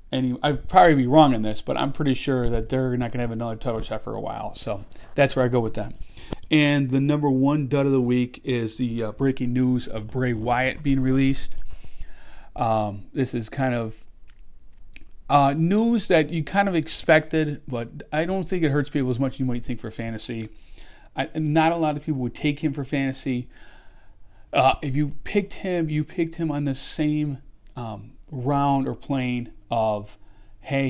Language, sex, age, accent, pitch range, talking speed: English, male, 40-59, American, 115-140 Hz, 200 wpm